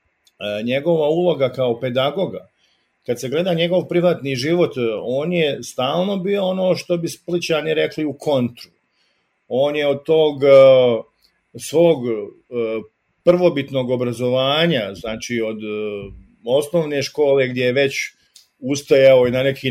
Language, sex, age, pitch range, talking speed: English, male, 50-69, 120-150 Hz, 120 wpm